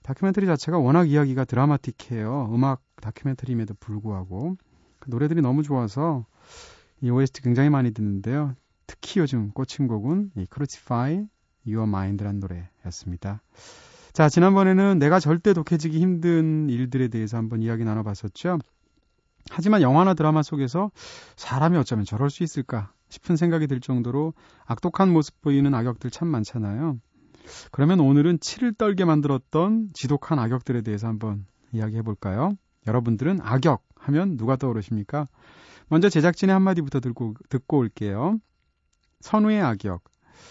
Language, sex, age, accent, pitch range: Korean, male, 30-49, native, 115-170 Hz